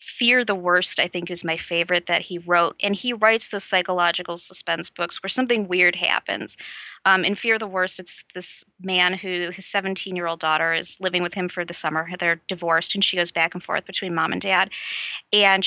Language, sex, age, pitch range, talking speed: English, female, 20-39, 180-205 Hz, 205 wpm